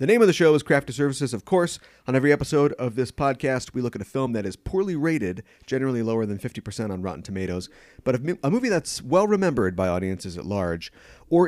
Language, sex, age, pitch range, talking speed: English, male, 30-49, 100-140 Hz, 225 wpm